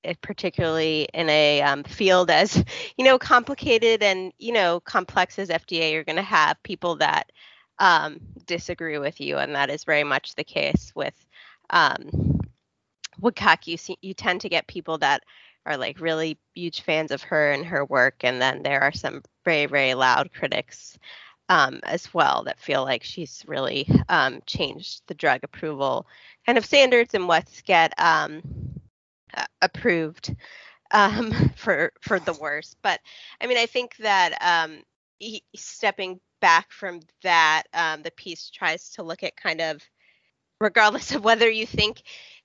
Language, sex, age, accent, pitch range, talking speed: English, female, 20-39, American, 165-220 Hz, 160 wpm